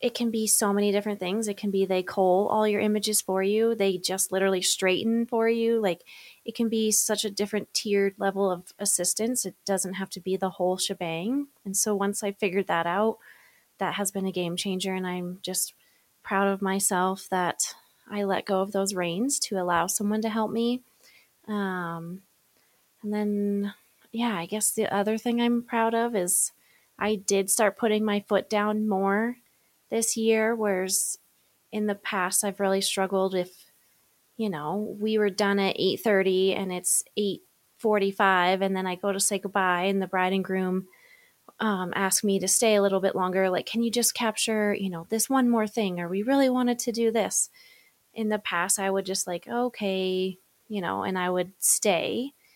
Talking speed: 190 wpm